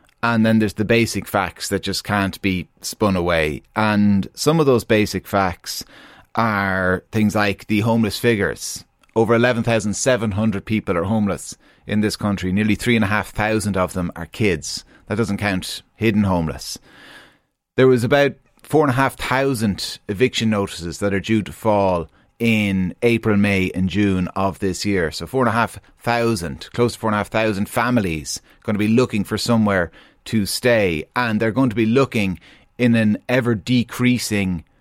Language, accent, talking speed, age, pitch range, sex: English, Irish, 160 wpm, 30-49, 100-120 Hz, male